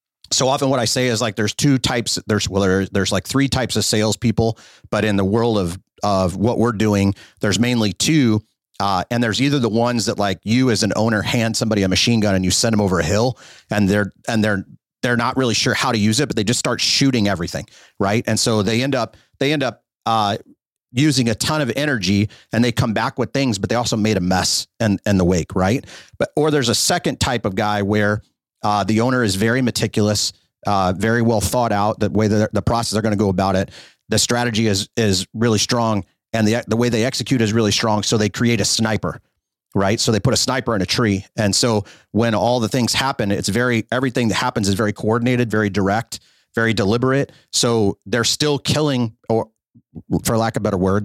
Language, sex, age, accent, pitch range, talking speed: English, male, 30-49, American, 100-120 Hz, 230 wpm